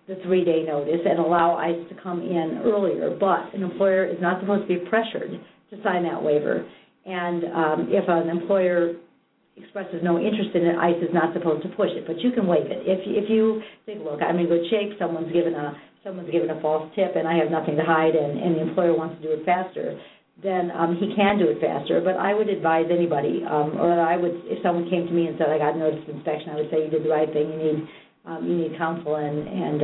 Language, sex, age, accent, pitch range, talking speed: English, female, 50-69, American, 155-185 Hz, 250 wpm